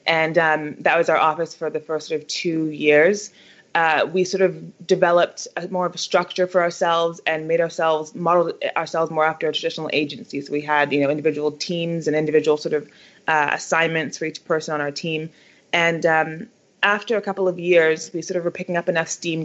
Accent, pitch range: American, 155-175 Hz